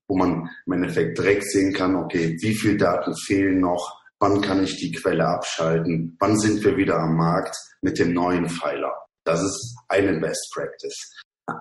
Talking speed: 180 wpm